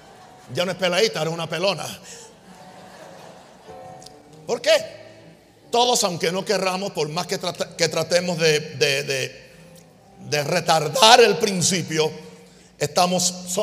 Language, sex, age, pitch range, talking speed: Spanish, male, 50-69, 160-210 Hz, 120 wpm